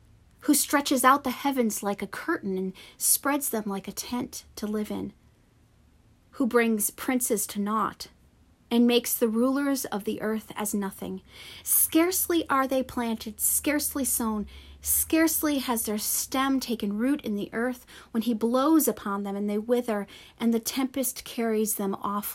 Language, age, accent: English, 40-59, American